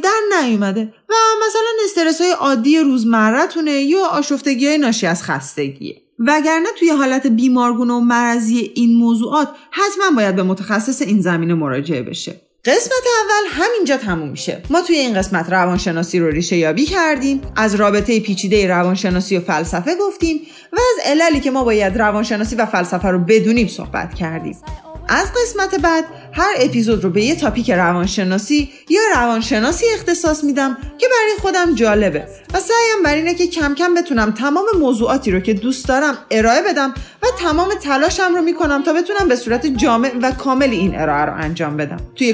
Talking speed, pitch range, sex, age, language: 160 wpm, 205-335 Hz, female, 30-49, Persian